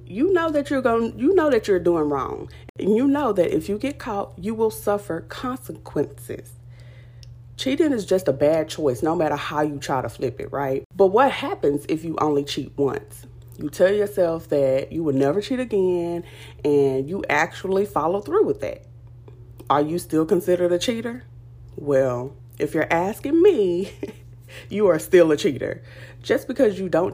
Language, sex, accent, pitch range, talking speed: English, female, American, 125-195 Hz, 180 wpm